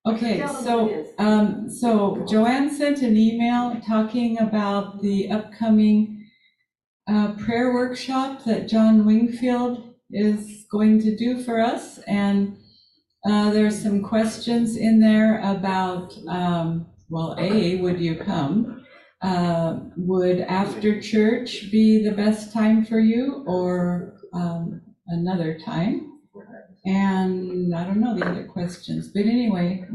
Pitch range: 180-220 Hz